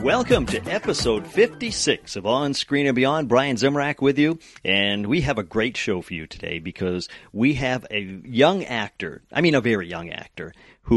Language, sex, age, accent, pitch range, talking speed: English, male, 40-59, American, 95-135 Hz, 190 wpm